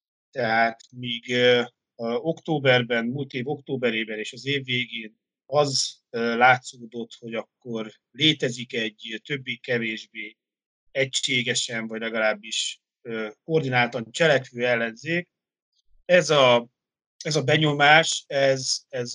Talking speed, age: 105 wpm, 30-49